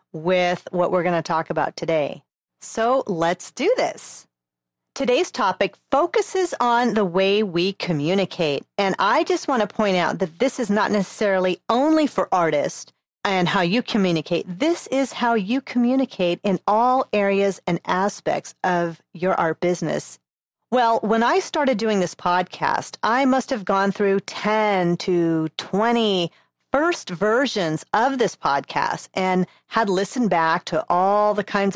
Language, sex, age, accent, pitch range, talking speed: English, female, 40-59, American, 175-230 Hz, 155 wpm